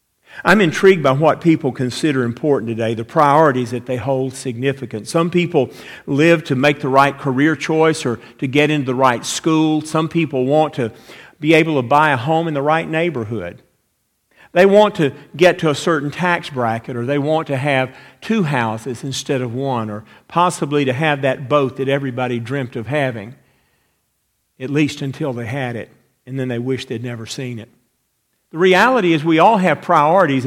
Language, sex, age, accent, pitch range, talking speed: English, male, 50-69, American, 125-155 Hz, 185 wpm